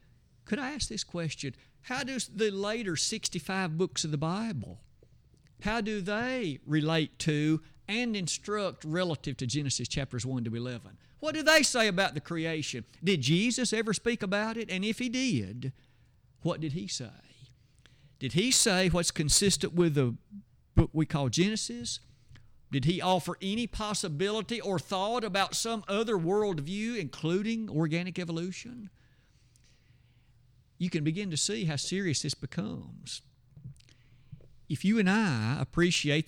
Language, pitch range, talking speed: English, 130-205 Hz, 145 wpm